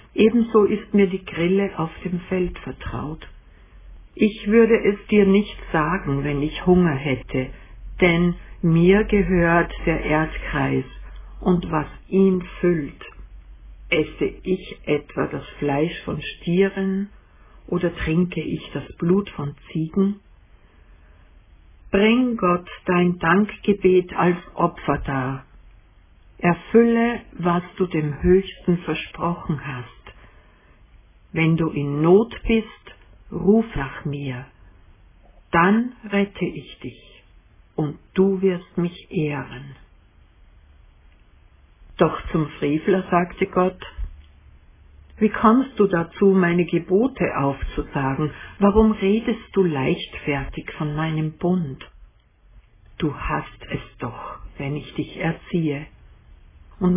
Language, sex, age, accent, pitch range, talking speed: German, female, 60-79, German, 135-190 Hz, 105 wpm